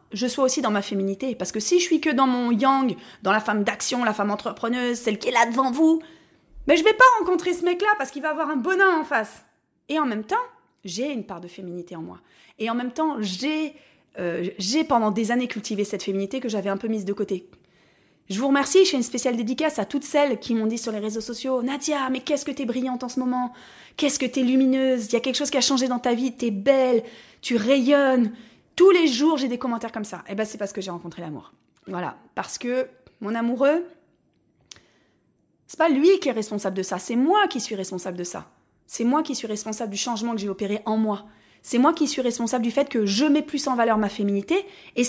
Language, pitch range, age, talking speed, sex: French, 220-295 Hz, 30-49, 250 wpm, female